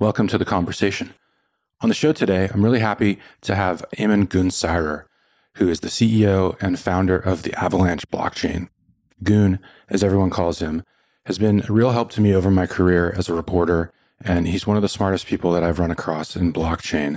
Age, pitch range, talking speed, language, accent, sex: 30-49, 85-105 Hz, 195 wpm, English, American, male